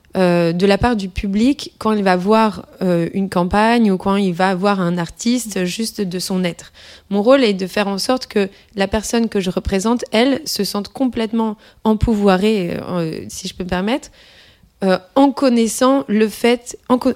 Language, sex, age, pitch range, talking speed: French, female, 20-39, 190-225 Hz, 190 wpm